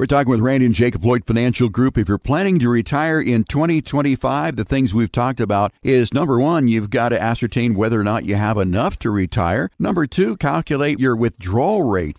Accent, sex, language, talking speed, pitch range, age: American, male, English, 205 wpm, 105-135 Hz, 50-69